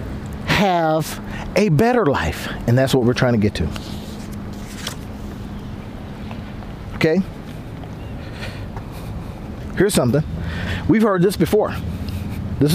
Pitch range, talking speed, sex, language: 105-170 Hz, 95 wpm, male, English